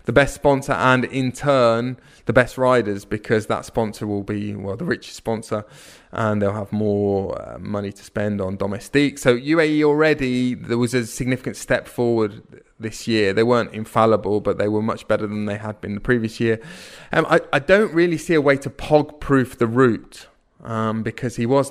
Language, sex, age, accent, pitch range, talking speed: English, male, 20-39, British, 105-135 Hz, 195 wpm